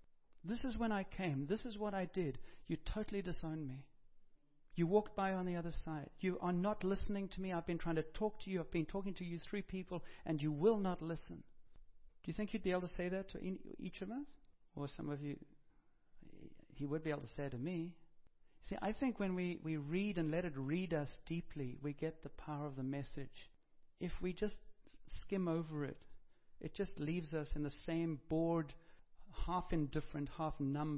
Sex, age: male, 60-79